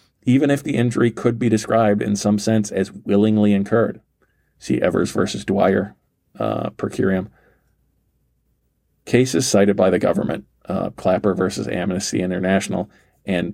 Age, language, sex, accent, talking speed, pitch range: 40-59, English, male, American, 135 wpm, 95-110 Hz